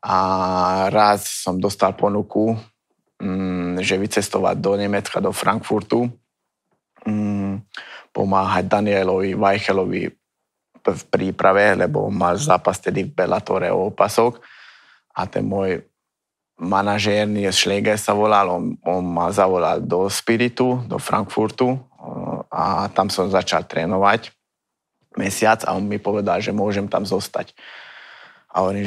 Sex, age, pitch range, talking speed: male, 20-39, 95-105 Hz, 115 wpm